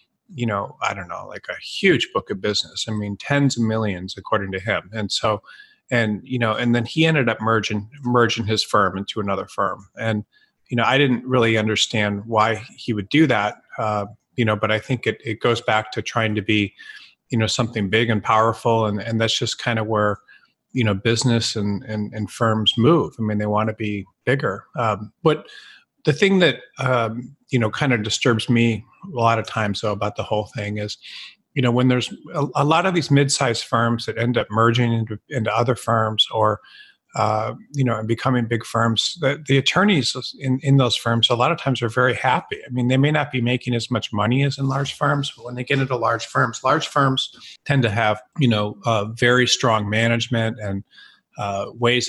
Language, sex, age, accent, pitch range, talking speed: English, male, 30-49, American, 110-125 Hz, 215 wpm